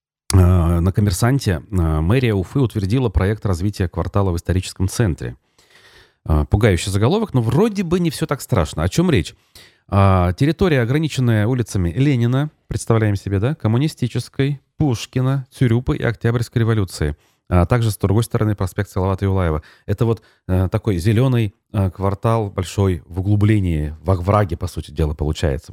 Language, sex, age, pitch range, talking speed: Russian, male, 30-49, 90-120 Hz, 135 wpm